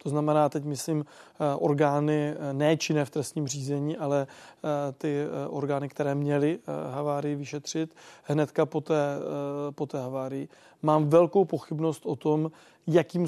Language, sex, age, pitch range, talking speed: Czech, male, 20-39, 140-160 Hz, 125 wpm